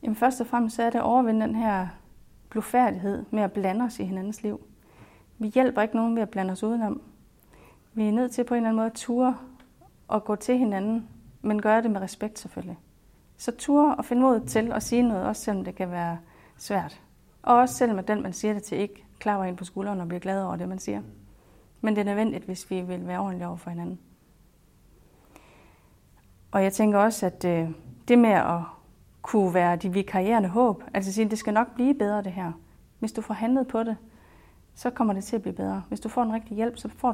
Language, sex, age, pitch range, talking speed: Danish, female, 30-49, 180-225 Hz, 225 wpm